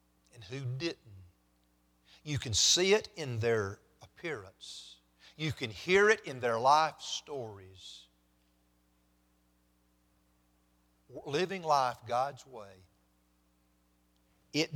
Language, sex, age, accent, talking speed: English, male, 50-69, American, 90 wpm